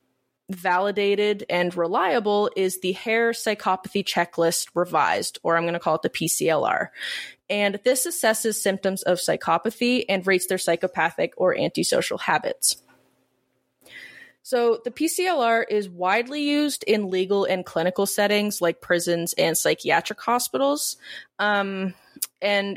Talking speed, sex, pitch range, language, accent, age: 125 wpm, female, 180-225 Hz, English, American, 20-39